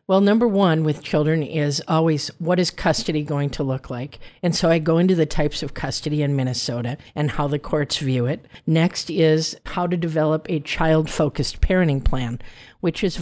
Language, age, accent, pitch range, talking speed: English, 50-69, American, 145-180 Hz, 195 wpm